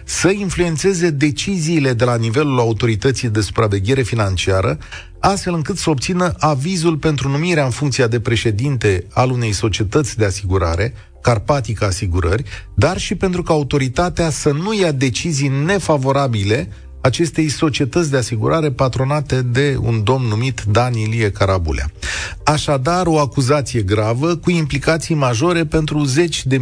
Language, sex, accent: Romanian, male, native